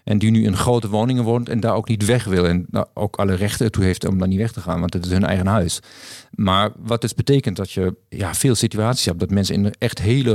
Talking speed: 260 wpm